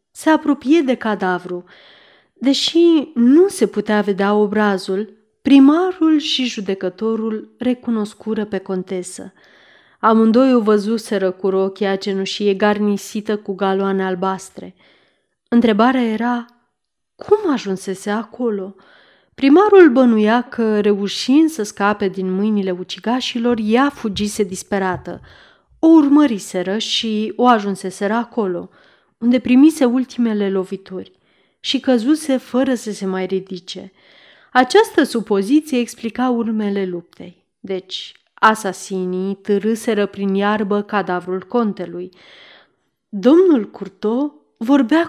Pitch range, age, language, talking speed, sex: 195-240 Hz, 30-49, Romanian, 100 wpm, female